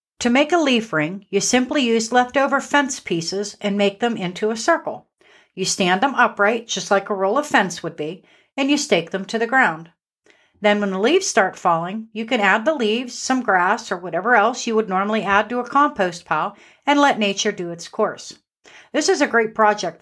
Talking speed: 215 wpm